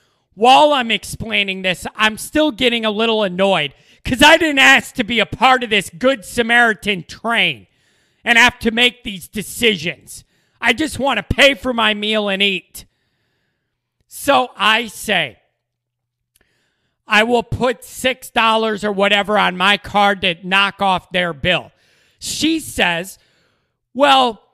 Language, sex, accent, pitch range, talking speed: English, male, American, 185-240 Hz, 145 wpm